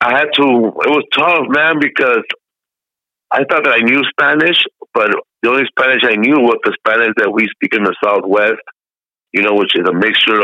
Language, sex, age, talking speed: English, male, 50-69, 200 wpm